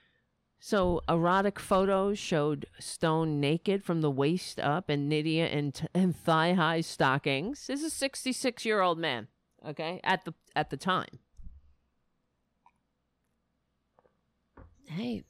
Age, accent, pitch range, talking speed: 50-69, American, 140-190 Hz, 115 wpm